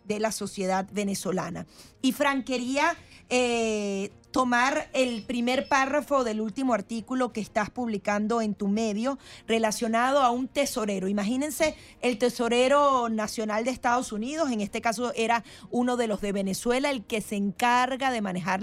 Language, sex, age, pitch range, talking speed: Spanish, female, 30-49, 205-255 Hz, 150 wpm